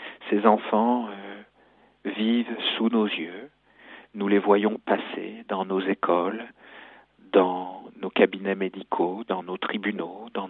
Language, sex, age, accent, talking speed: French, male, 50-69, French, 125 wpm